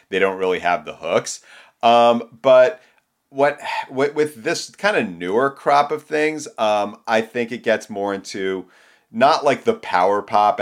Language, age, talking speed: English, 30-49, 170 wpm